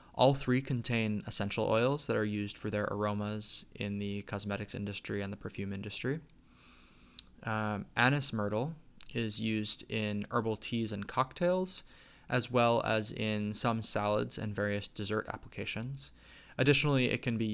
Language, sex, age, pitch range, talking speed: English, male, 20-39, 105-120 Hz, 145 wpm